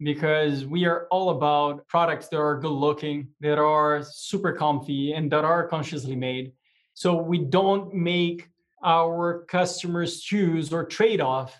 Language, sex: English, male